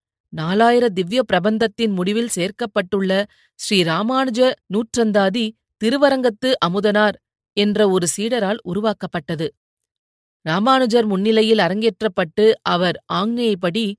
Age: 30-49